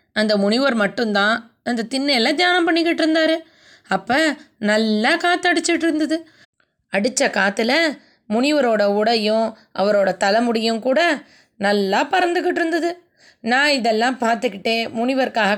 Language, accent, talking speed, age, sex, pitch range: Tamil, native, 100 wpm, 20-39, female, 210-290 Hz